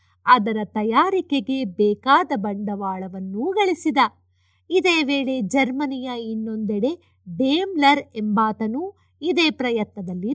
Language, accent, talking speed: Kannada, native, 75 wpm